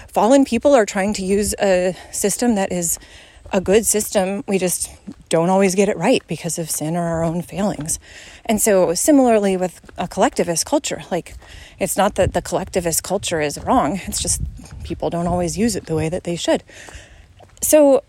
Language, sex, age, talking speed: English, female, 30-49, 185 wpm